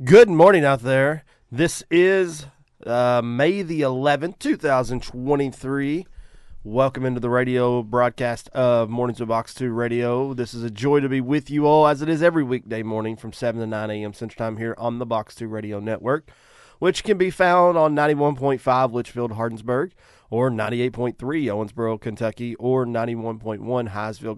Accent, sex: American, male